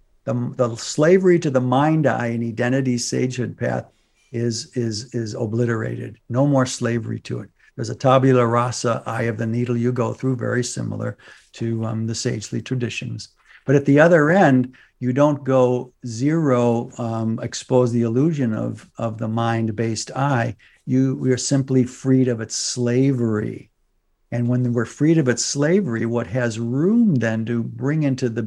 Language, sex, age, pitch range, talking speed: English, male, 60-79, 115-135 Hz, 170 wpm